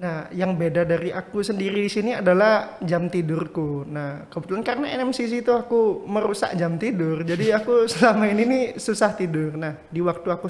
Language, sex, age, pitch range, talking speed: Indonesian, male, 20-39, 160-190 Hz, 170 wpm